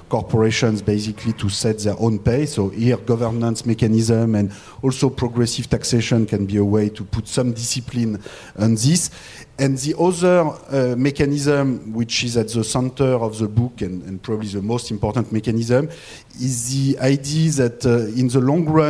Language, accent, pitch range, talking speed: Swedish, French, 115-140 Hz, 170 wpm